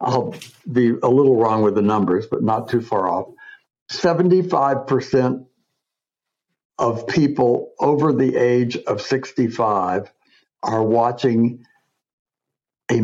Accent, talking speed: American, 110 wpm